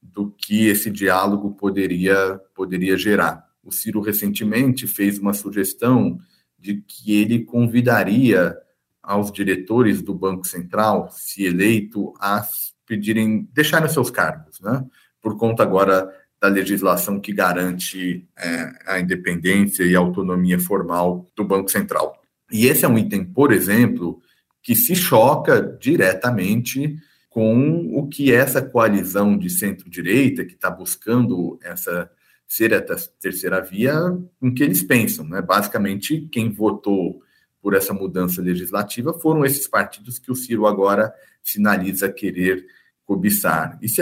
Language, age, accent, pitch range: Portuguese, 50-69, Brazilian, 95-120 Hz